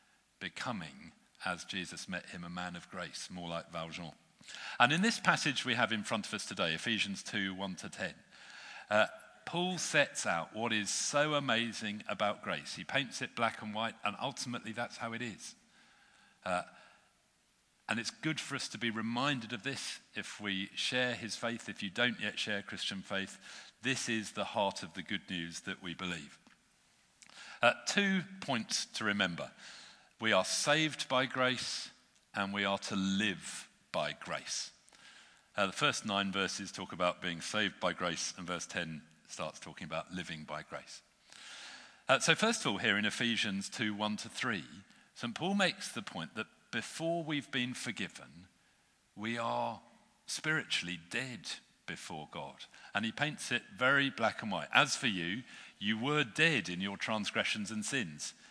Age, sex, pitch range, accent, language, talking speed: 50-69, male, 95-140 Hz, British, English, 170 wpm